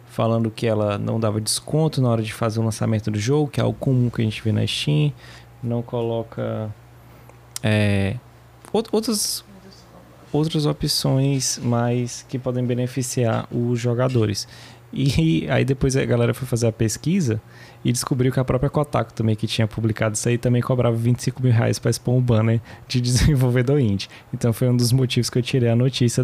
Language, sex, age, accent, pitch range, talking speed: Portuguese, male, 20-39, Brazilian, 115-145 Hz, 185 wpm